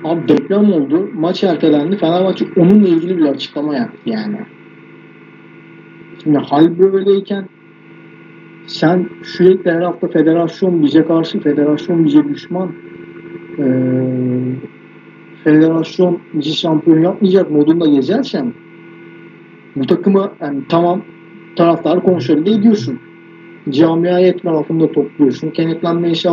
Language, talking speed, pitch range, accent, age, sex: Turkish, 100 wpm, 150-195 Hz, native, 50-69, male